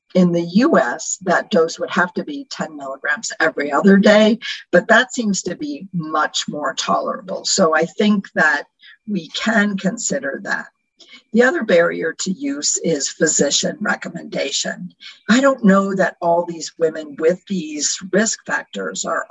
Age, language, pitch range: 50-69, English, 175-220 Hz